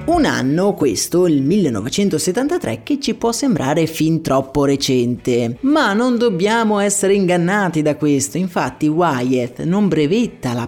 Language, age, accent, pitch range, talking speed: Italian, 30-49, native, 140-215 Hz, 135 wpm